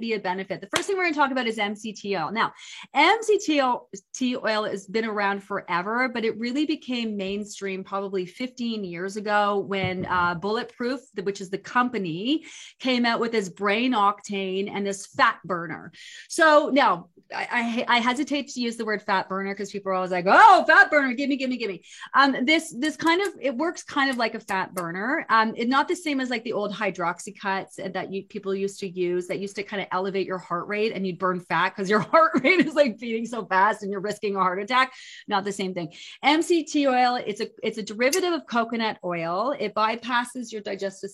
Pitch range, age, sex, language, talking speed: 195-260 Hz, 30-49, female, English, 220 wpm